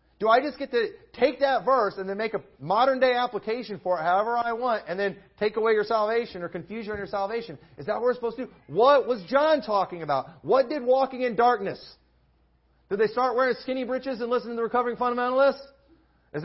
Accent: American